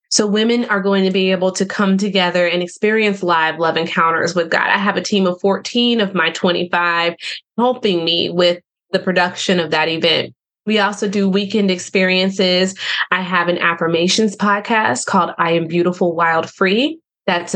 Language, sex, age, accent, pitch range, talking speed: English, female, 20-39, American, 175-195 Hz, 175 wpm